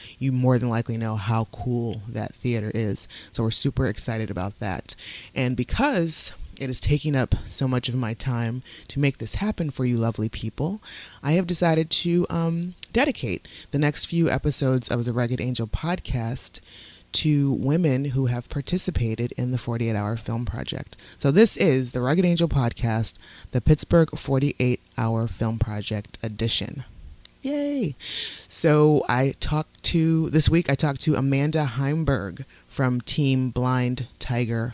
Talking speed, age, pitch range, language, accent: 155 wpm, 30-49, 115-145 Hz, English, American